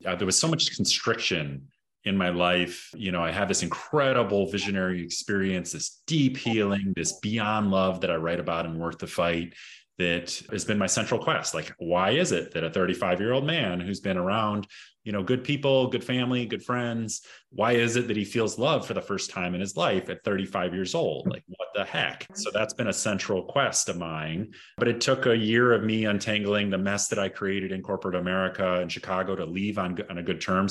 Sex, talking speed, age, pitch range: male, 215 wpm, 30-49, 85-100 Hz